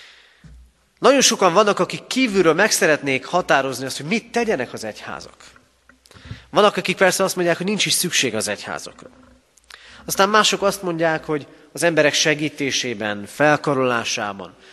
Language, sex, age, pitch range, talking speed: Hungarian, male, 30-49, 125-180 Hz, 140 wpm